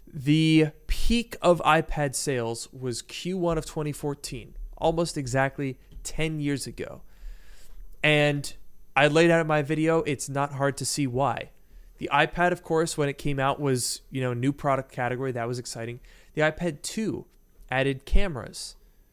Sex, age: male, 20-39